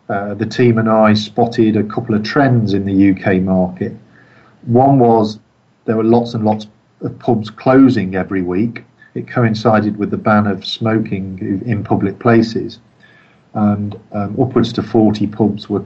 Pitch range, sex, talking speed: 105-130 Hz, male, 165 wpm